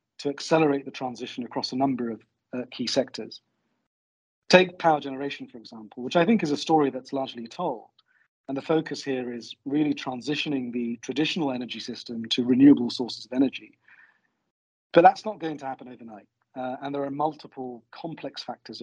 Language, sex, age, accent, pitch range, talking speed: English, male, 40-59, British, 125-150 Hz, 175 wpm